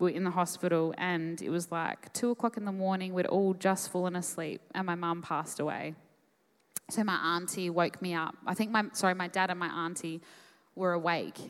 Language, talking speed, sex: English, 215 wpm, female